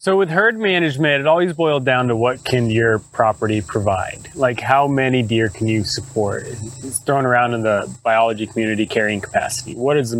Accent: American